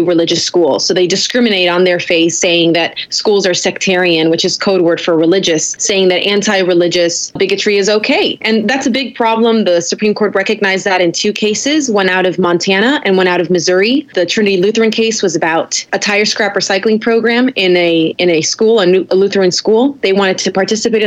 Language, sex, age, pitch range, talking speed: English, female, 20-39, 180-225 Hz, 205 wpm